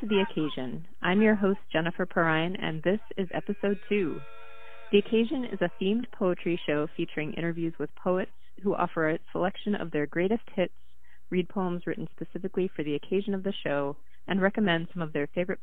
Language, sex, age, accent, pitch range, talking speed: English, female, 30-49, American, 150-195 Hz, 180 wpm